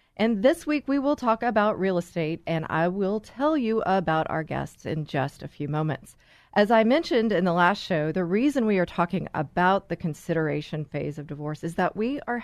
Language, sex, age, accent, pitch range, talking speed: English, female, 40-59, American, 155-220 Hz, 210 wpm